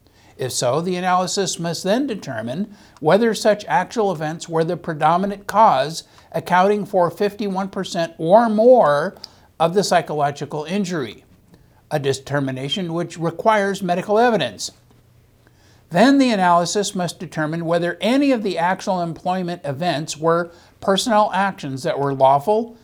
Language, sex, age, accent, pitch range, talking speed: English, male, 60-79, American, 145-190 Hz, 125 wpm